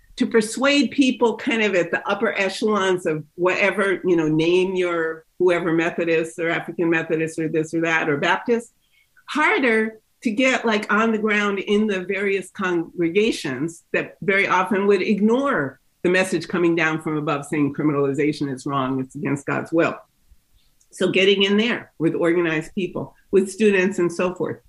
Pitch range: 165-210 Hz